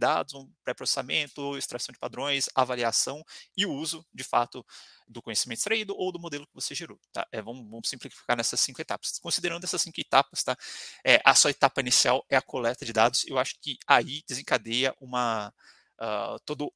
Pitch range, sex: 120-145 Hz, male